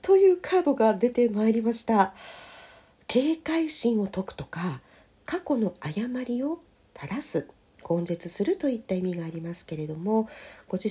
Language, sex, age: Japanese, female, 50-69